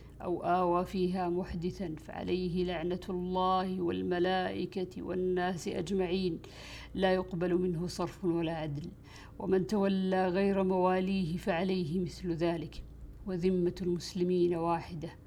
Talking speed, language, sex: 100 wpm, Arabic, female